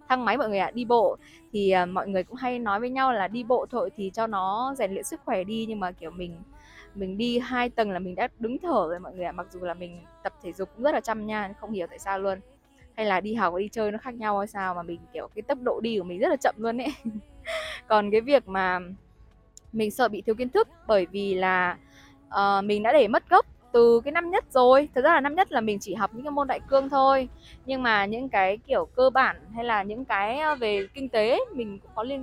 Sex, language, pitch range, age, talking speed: female, Vietnamese, 190-260 Hz, 20-39, 270 wpm